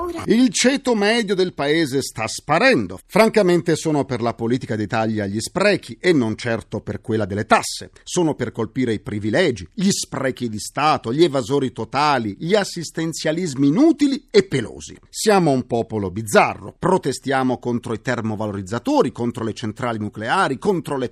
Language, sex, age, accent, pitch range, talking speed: Italian, male, 50-69, native, 120-195 Hz, 150 wpm